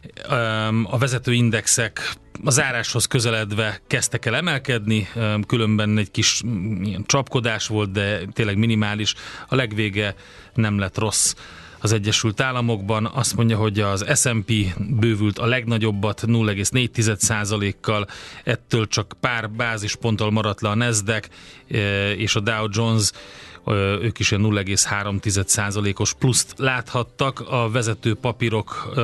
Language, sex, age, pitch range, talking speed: Hungarian, male, 30-49, 105-120 Hz, 115 wpm